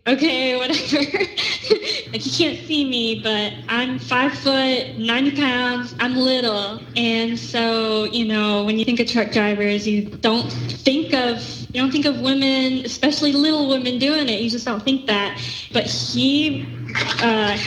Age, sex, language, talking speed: 20-39, female, English, 160 wpm